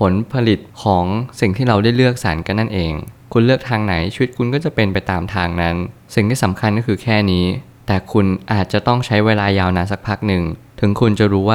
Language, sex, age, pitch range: Thai, male, 20-39, 95-120 Hz